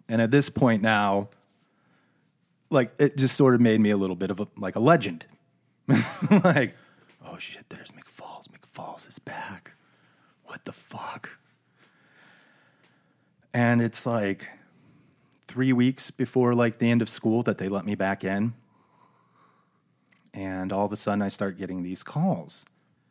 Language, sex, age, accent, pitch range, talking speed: English, male, 30-49, American, 100-130 Hz, 150 wpm